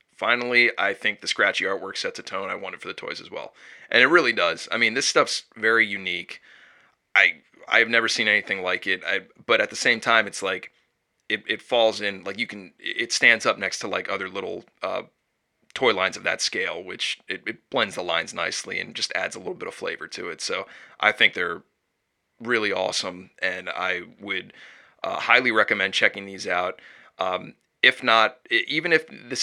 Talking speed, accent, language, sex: 210 wpm, American, English, male